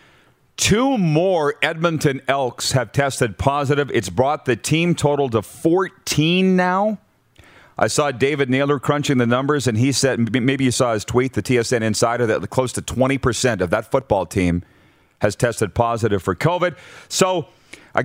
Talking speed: 160 wpm